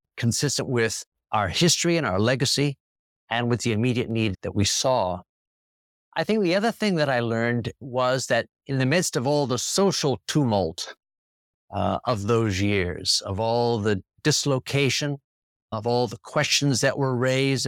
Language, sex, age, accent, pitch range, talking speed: English, male, 50-69, American, 115-145 Hz, 165 wpm